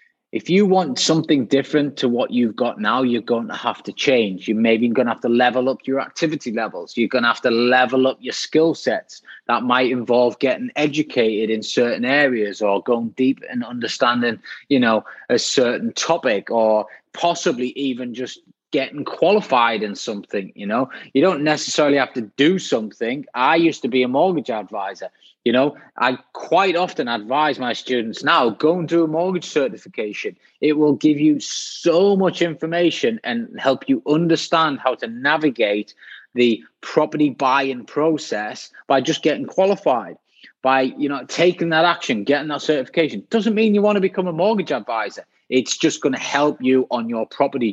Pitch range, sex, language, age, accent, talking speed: 125-170 Hz, male, English, 20-39, British, 180 wpm